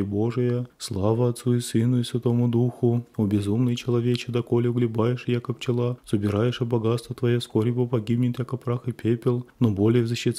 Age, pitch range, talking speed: 20-39, 115-125 Hz, 180 wpm